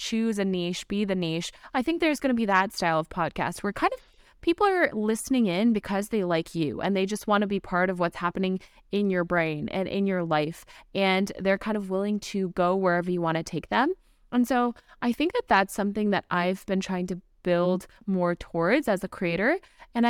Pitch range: 180-220 Hz